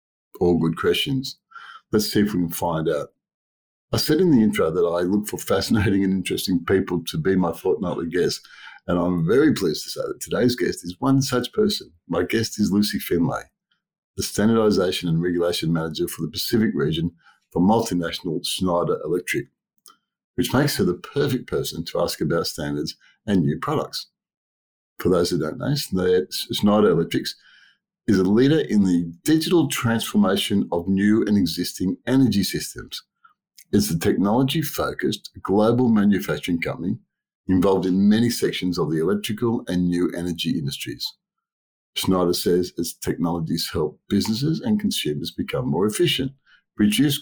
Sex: male